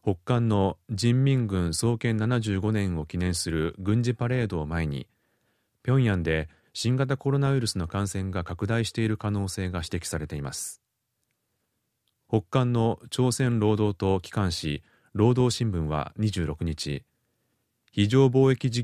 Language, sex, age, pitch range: Japanese, male, 30-49, 90-120 Hz